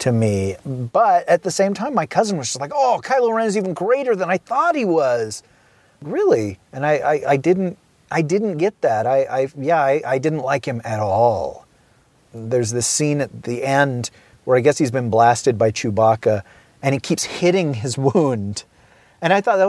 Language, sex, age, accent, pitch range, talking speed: English, male, 30-49, American, 120-165 Hz, 200 wpm